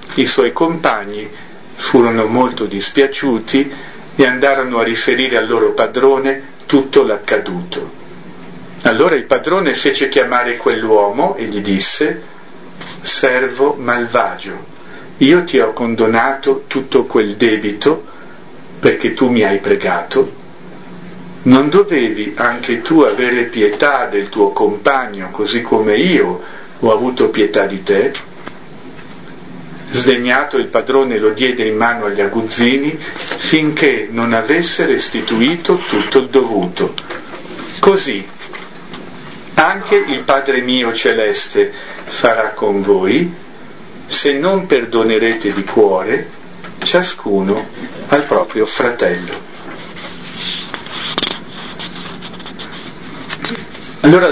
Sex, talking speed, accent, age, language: male, 100 wpm, native, 50-69, Italian